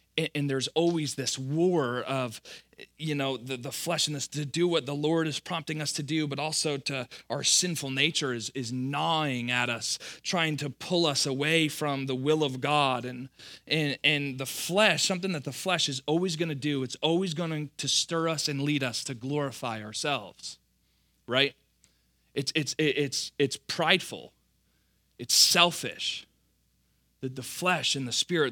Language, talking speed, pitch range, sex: English, 170 wpm, 130-165 Hz, male